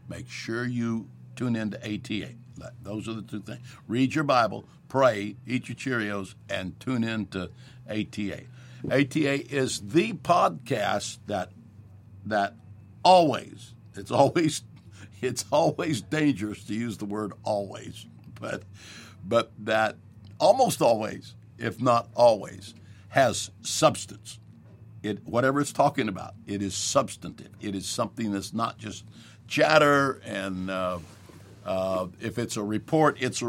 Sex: male